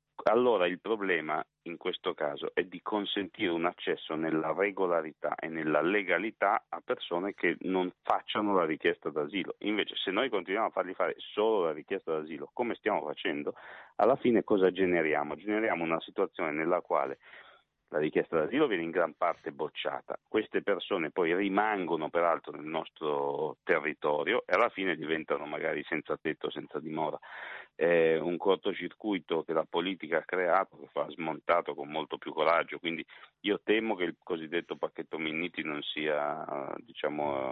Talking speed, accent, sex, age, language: 155 wpm, native, male, 40-59, Italian